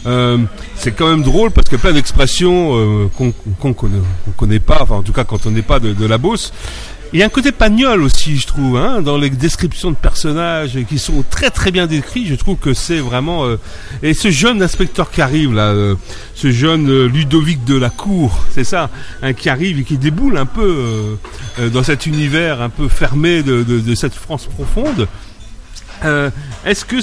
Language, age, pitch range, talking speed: French, 40-59, 115-170 Hz, 220 wpm